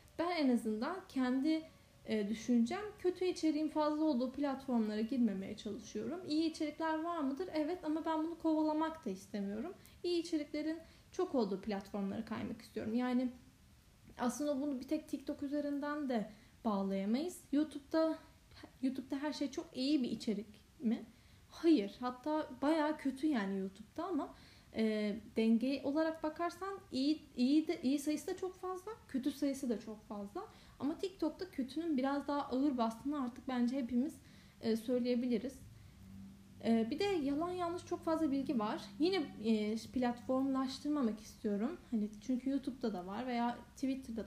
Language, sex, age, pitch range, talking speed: Turkish, female, 10-29, 230-310 Hz, 135 wpm